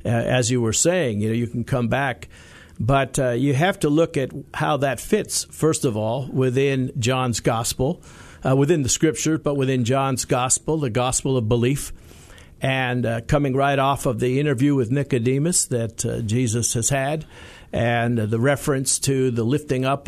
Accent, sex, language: American, male, English